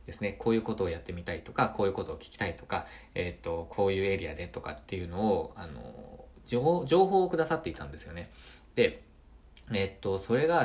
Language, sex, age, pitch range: Japanese, male, 20-39, 90-120 Hz